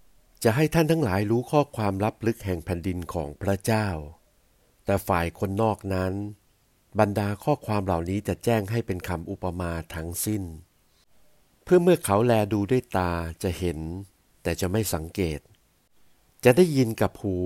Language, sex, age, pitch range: Thai, male, 60-79, 90-115 Hz